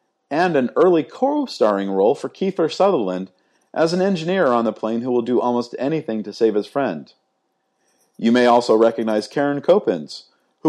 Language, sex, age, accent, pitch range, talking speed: English, male, 40-59, American, 110-135 Hz, 170 wpm